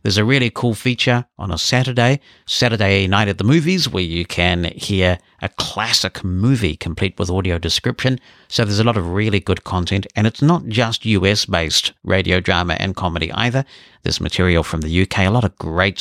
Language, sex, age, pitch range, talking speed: English, male, 50-69, 85-110 Hz, 190 wpm